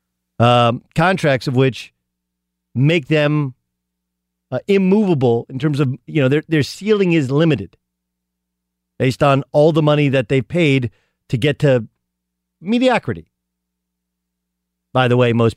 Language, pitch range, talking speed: English, 105-155 Hz, 135 wpm